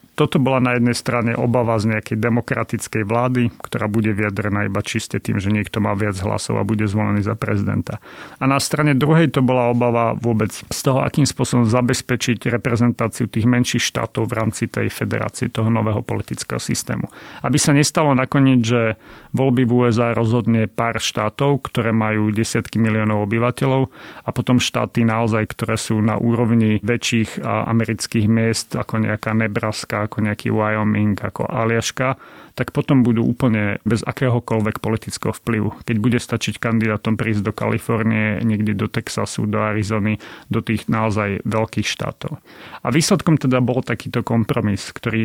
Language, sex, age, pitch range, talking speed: Slovak, male, 40-59, 110-125 Hz, 155 wpm